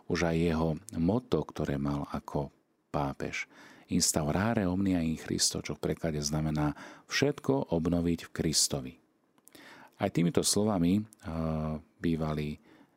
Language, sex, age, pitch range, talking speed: Slovak, male, 40-59, 75-90 Hz, 110 wpm